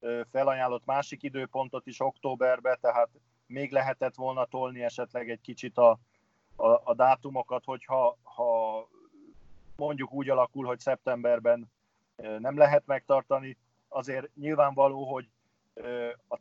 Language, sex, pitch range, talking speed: Hungarian, male, 115-135 Hz, 115 wpm